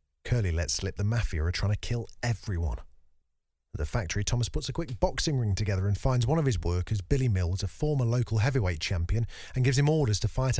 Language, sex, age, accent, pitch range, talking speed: English, male, 40-59, British, 85-130 Hz, 220 wpm